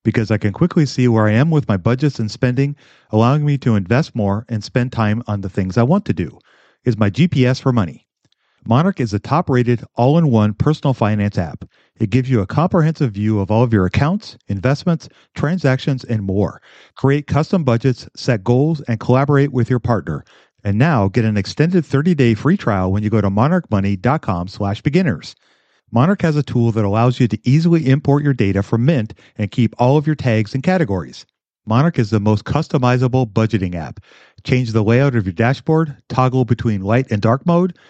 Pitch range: 110-140 Hz